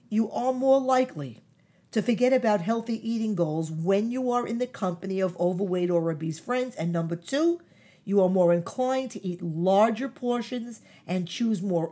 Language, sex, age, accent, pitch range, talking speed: English, female, 50-69, American, 175-235 Hz, 175 wpm